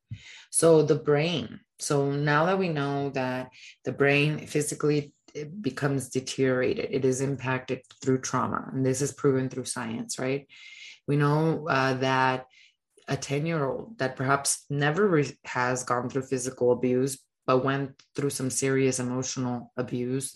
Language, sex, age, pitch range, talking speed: English, female, 20-39, 130-145 Hz, 140 wpm